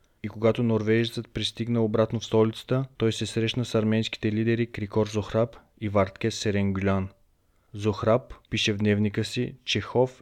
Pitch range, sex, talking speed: 105-115 Hz, male, 145 wpm